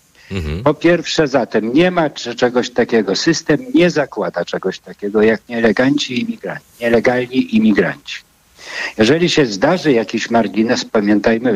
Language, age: Polish, 50-69